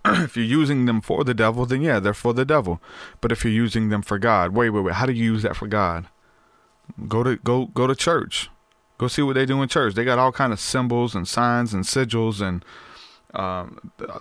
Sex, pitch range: male, 100-120 Hz